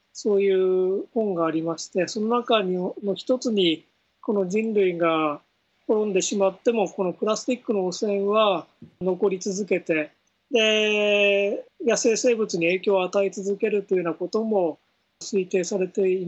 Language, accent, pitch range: Japanese, native, 175-210 Hz